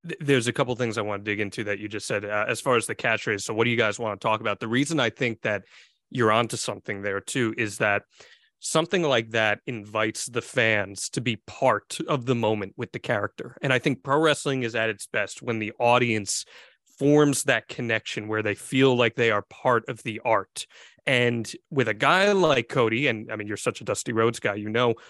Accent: American